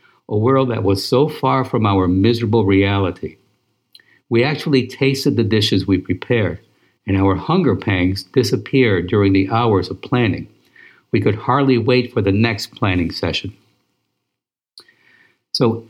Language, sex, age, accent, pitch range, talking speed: English, male, 60-79, American, 100-130 Hz, 140 wpm